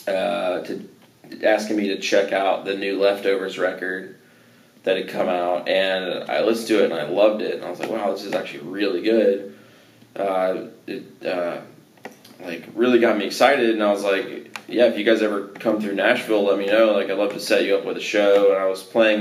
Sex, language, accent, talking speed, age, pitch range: male, English, American, 220 wpm, 20-39, 95-110 Hz